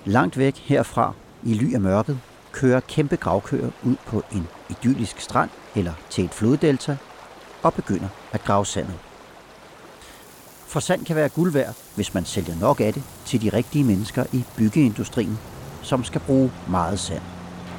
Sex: male